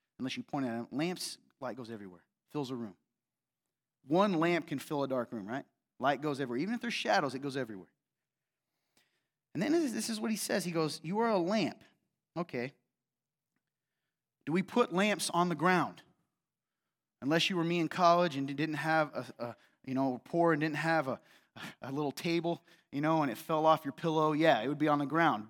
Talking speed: 205 wpm